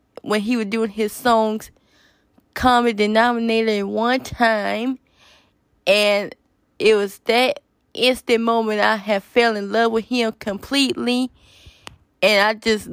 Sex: female